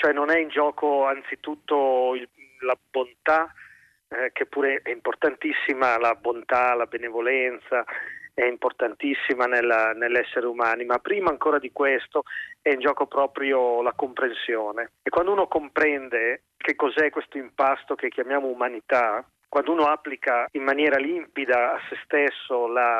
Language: Italian